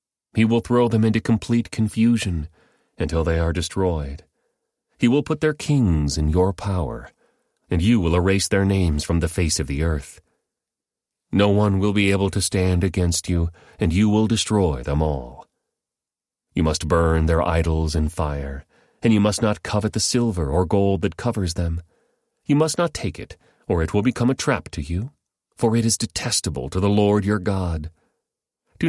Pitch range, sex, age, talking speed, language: 80-105 Hz, male, 30-49, 185 wpm, English